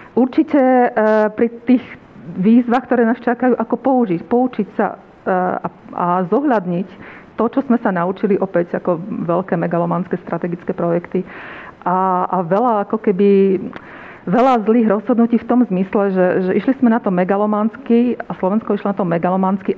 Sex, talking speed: female, 145 wpm